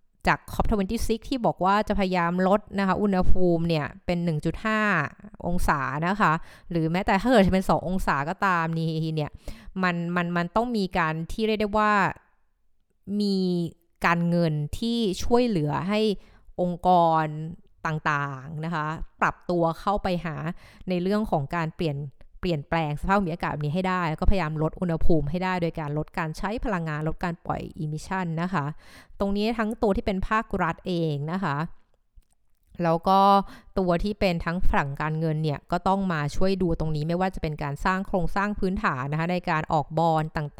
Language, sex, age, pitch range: Thai, female, 20-39, 160-195 Hz